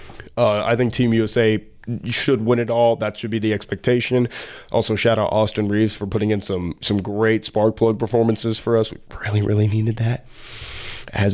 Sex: male